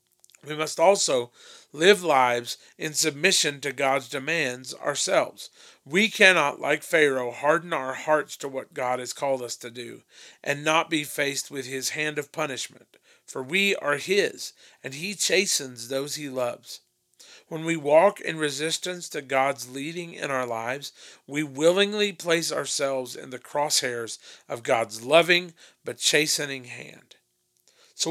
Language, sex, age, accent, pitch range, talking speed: English, male, 40-59, American, 130-175 Hz, 150 wpm